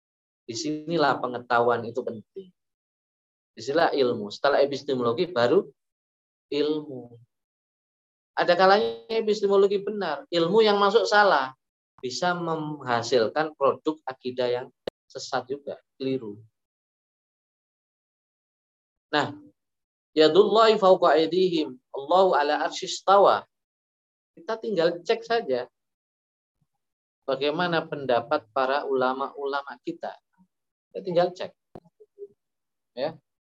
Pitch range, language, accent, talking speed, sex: 125-185 Hz, Indonesian, native, 75 wpm, male